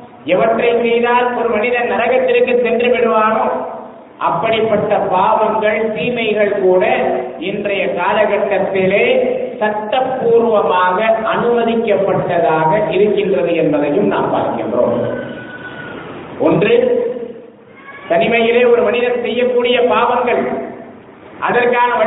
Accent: Indian